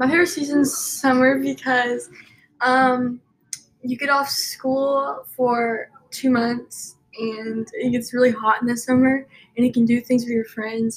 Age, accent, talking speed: 10-29, American, 165 wpm